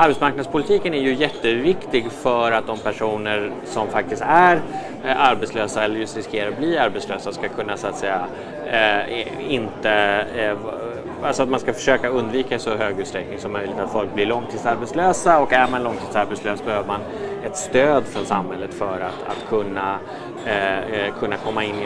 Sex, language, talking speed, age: male, Swedish, 165 wpm, 30-49